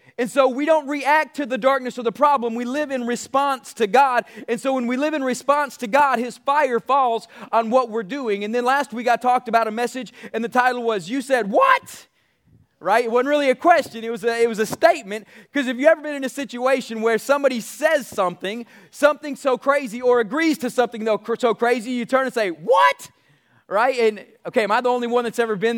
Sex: male